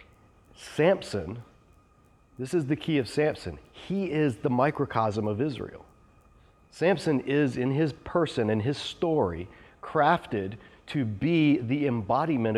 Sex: male